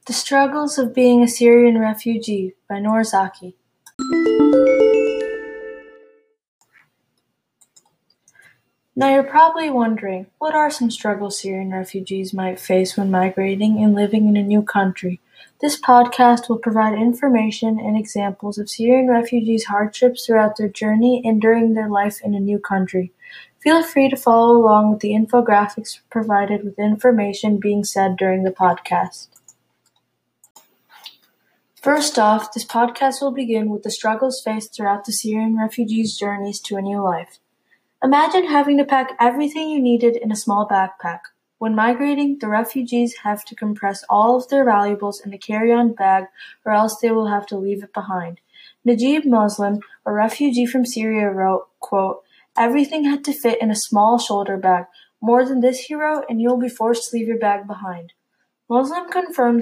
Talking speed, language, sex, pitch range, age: 155 wpm, English, female, 205-250 Hz, 20-39